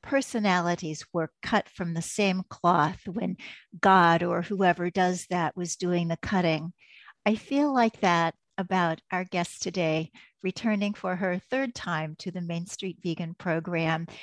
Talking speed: 150 wpm